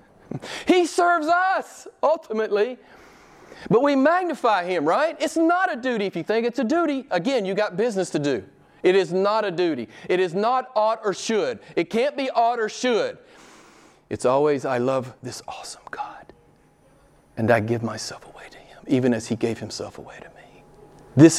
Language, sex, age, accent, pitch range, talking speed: English, male, 40-59, American, 140-220 Hz, 180 wpm